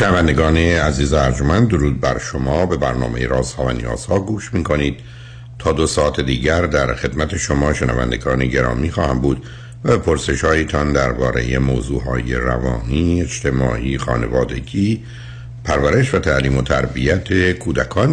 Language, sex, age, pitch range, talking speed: Persian, male, 60-79, 65-105 Hz, 135 wpm